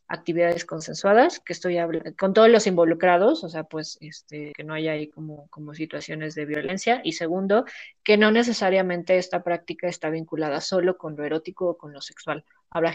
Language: Spanish